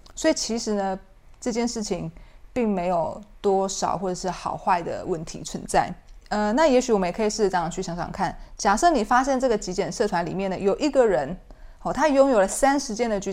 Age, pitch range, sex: 20-39, 185-235 Hz, female